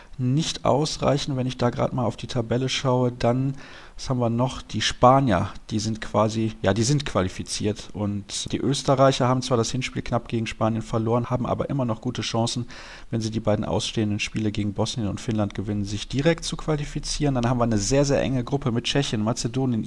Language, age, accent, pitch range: German, 40-59, German, 110-130 Hz